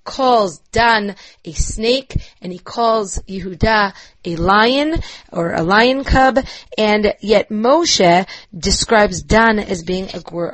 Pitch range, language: 185-230 Hz, English